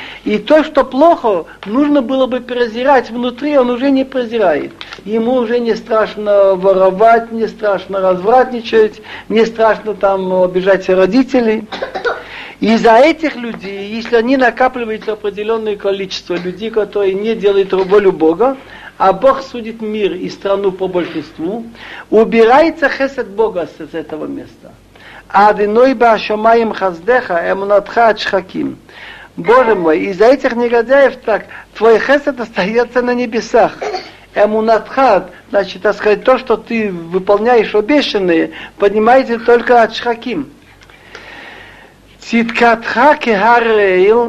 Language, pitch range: Russian, 200-245 Hz